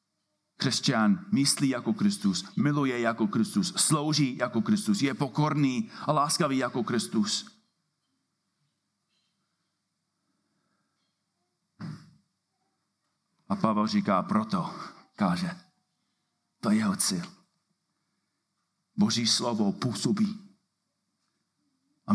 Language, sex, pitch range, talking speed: Czech, male, 140-200 Hz, 75 wpm